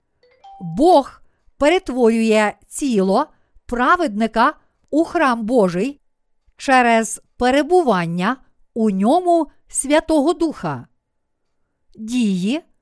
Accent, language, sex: native, Ukrainian, female